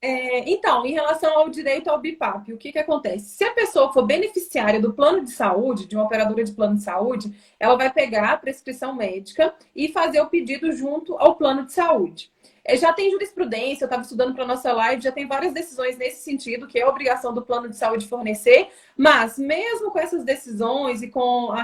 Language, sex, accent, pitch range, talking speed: Portuguese, female, Brazilian, 240-315 Hz, 210 wpm